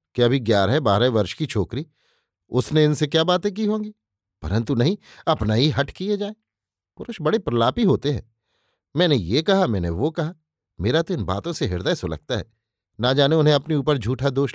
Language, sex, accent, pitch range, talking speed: Hindi, male, native, 110-165 Hz, 190 wpm